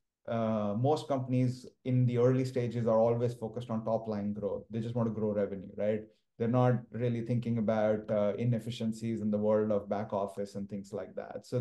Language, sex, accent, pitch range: English, male, Indian, 110-125 Hz